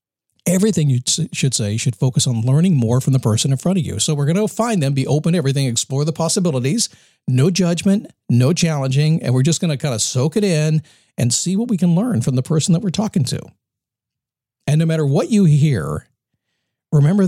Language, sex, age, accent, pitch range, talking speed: English, male, 50-69, American, 120-165 Hz, 220 wpm